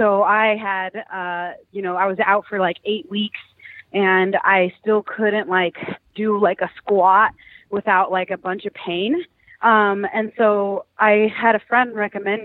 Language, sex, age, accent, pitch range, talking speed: English, female, 20-39, American, 195-215 Hz, 175 wpm